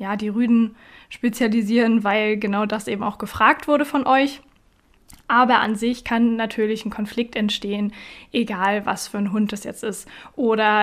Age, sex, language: 20-39, female, German